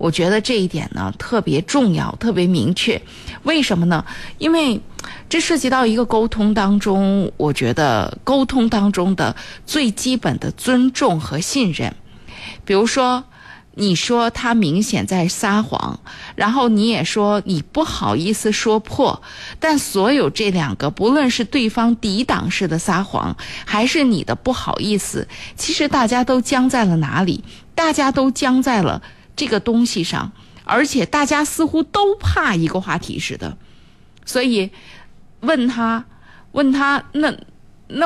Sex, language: female, Chinese